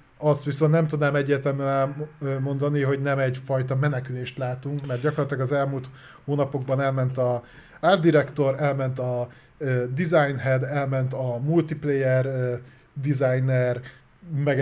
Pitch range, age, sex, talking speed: 130-150 Hz, 30-49, male, 115 wpm